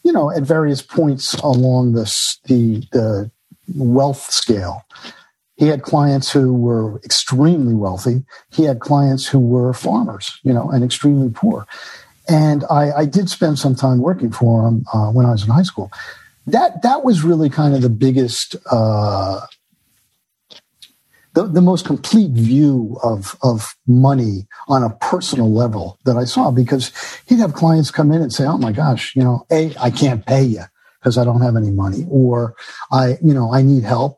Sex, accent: male, American